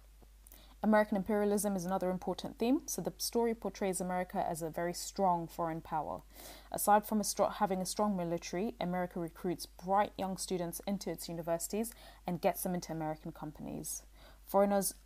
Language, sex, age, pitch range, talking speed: English, female, 20-39, 165-190 Hz, 150 wpm